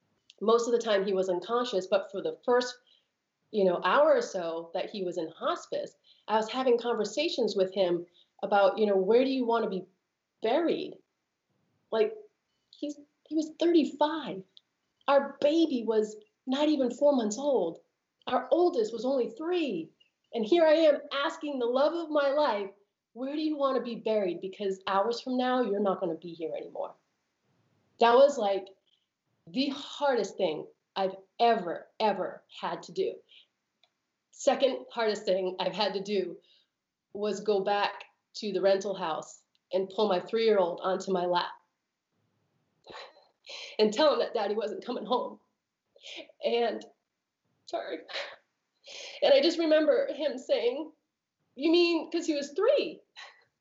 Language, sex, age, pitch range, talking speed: English, female, 30-49, 200-300 Hz, 155 wpm